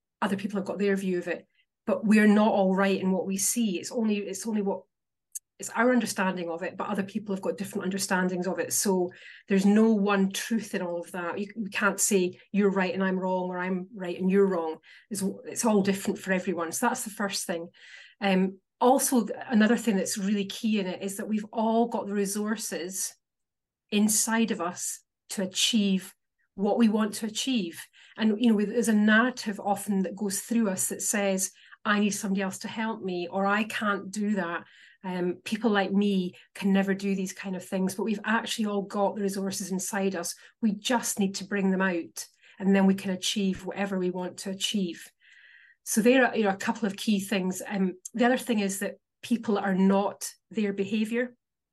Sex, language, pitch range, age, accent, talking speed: female, English, 190-220 Hz, 30-49, British, 210 wpm